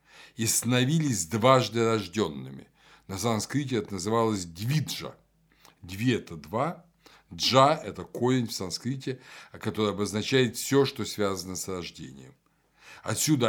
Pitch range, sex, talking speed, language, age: 105-135 Hz, male, 120 wpm, Russian, 60-79